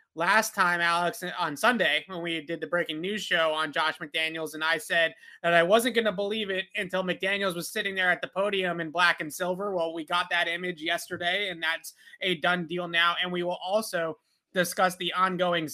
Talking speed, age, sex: 215 wpm, 30-49, male